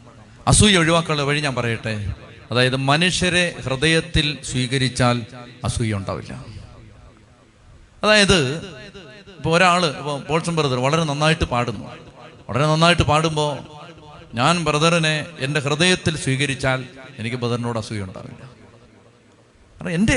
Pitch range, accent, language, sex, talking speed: 125-155 Hz, native, Malayalam, male, 85 wpm